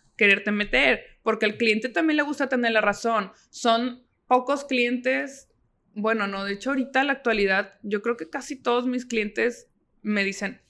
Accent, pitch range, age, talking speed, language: Mexican, 205-250 Hz, 20-39, 175 wpm, Spanish